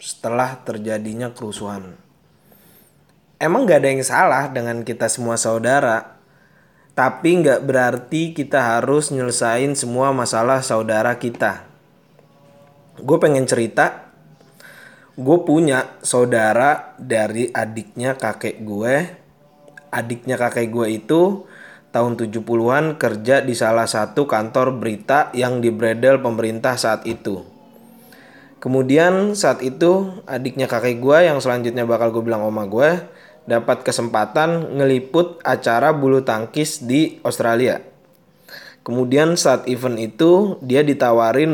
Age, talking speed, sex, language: 20-39, 110 wpm, male, Indonesian